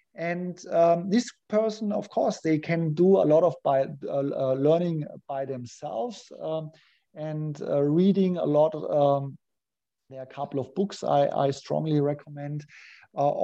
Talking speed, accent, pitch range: 155 wpm, German, 140-175 Hz